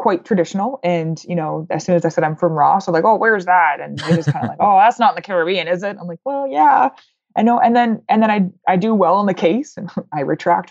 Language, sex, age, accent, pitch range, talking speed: English, female, 20-39, American, 160-195 Hz, 285 wpm